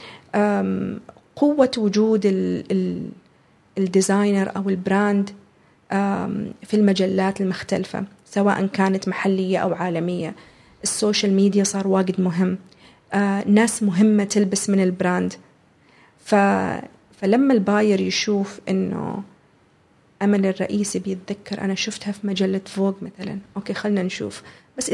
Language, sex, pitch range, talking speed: Arabic, female, 195-225 Hz, 100 wpm